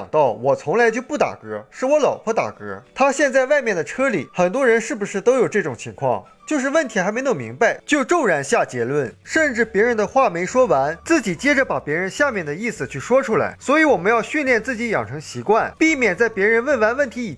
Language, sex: Chinese, male